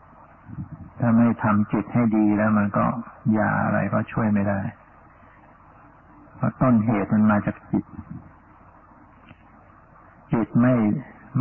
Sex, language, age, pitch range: male, Thai, 60-79, 105-115 Hz